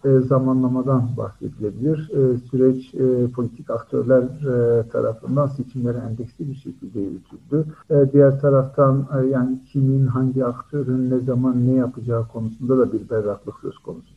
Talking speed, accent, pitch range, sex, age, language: 140 wpm, native, 120-145 Hz, male, 50-69, Turkish